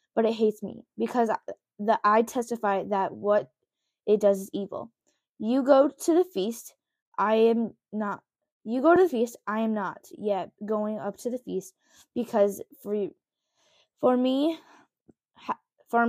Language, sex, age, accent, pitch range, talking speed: English, female, 10-29, American, 210-295 Hz, 155 wpm